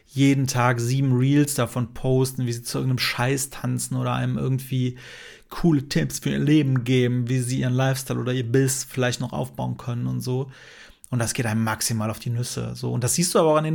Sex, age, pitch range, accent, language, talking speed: male, 30-49, 120-135 Hz, German, German, 220 wpm